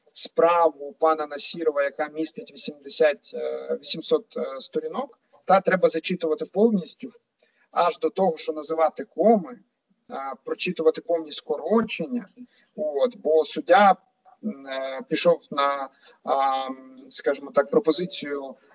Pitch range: 155-220 Hz